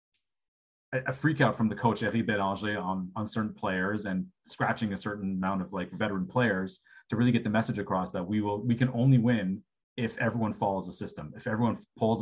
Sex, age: male, 30-49